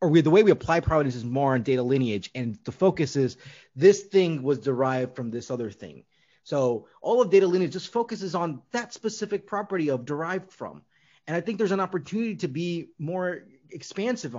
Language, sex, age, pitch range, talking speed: English, male, 30-49, 140-185 Hz, 200 wpm